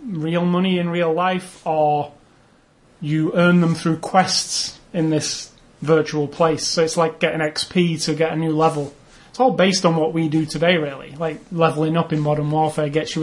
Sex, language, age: male, English, 30-49